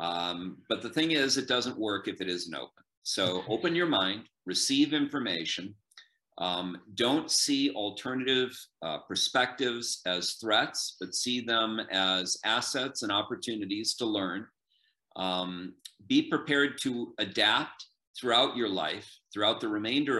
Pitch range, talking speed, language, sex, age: 90-125 Hz, 135 wpm, English, male, 40-59